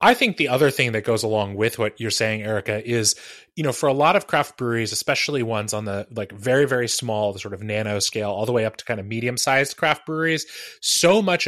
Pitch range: 115-155 Hz